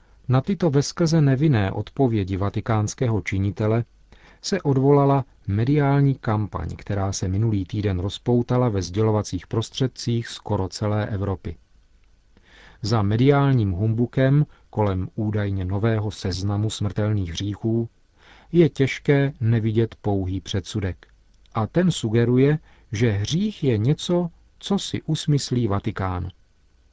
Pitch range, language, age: 100-130 Hz, Czech, 40-59